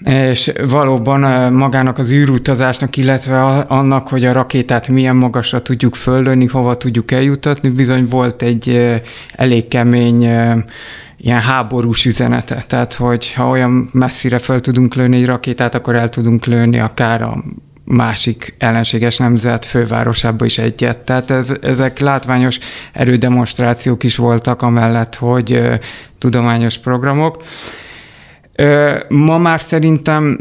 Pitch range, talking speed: 120-140 Hz, 120 wpm